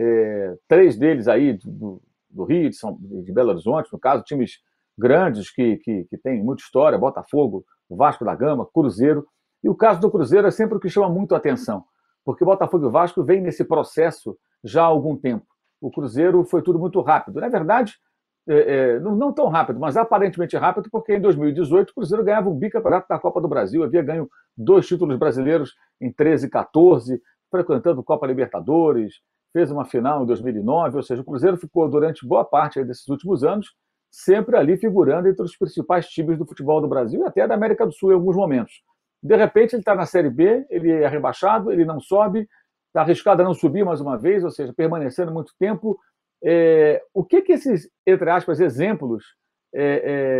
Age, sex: 50-69, male